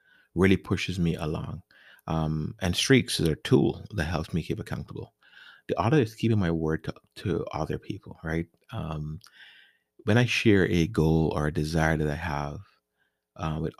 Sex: male